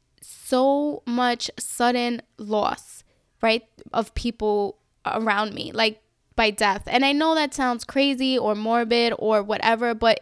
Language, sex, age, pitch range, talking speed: English, female, 10-29, 225-275 Hz, 135 wpm